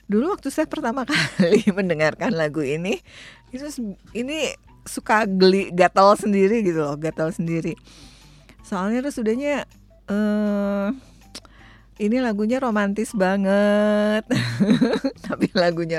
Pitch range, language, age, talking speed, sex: 145-205 Hz, Indonesian, 50-69, 110 wpm, female